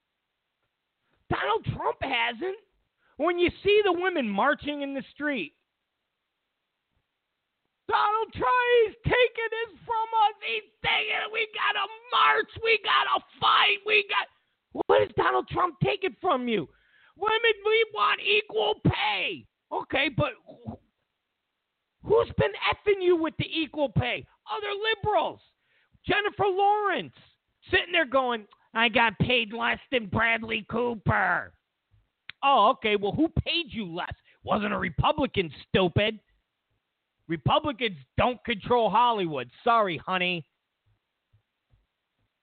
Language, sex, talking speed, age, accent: English, male, 120 wpm, 40-59, American